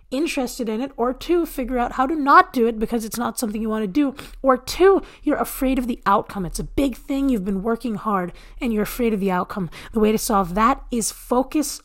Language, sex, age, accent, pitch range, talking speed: English, female, 30-49, American, 215-280 Hz, 245 wpm